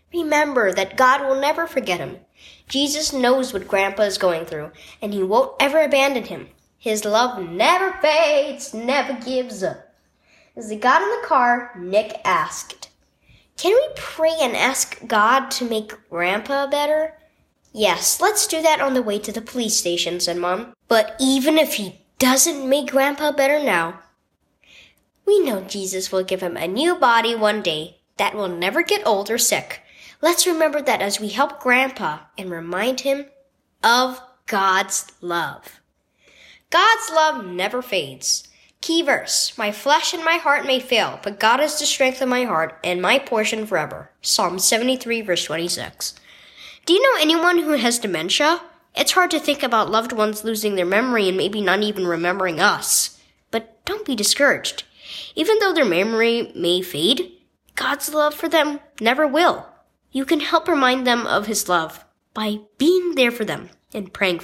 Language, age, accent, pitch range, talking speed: English, 10-29, American, 200-300 Hz, 170 wpm